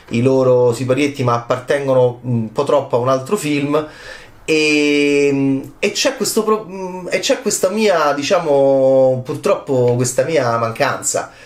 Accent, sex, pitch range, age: native, male, 125-170 Hz, 30-49